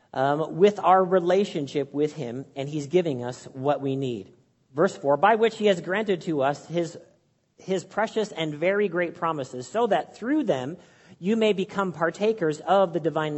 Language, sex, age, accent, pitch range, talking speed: English, male, 40-59, American, 135-190 Hz, 180 wpm